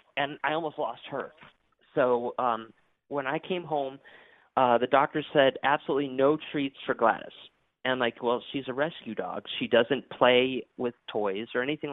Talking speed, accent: 175 wpm, American